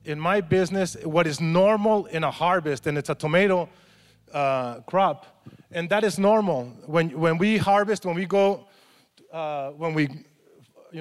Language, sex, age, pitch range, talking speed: English, male, 30-49, 150-185 Hz, 165 wpm